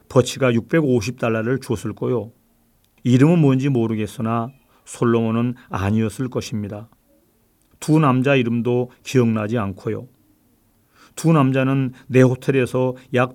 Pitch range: 115-135 Hz